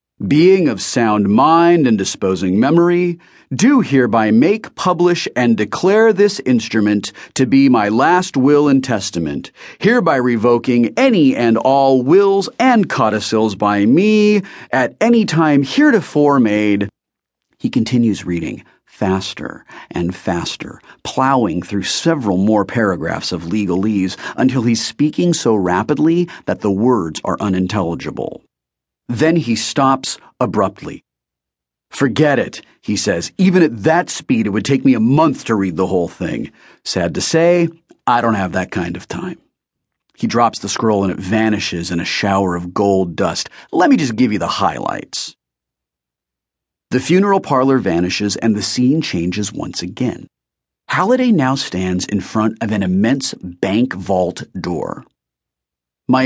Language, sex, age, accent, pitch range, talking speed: English, male, 40-59, American, 95-155 Hz, 145 wpm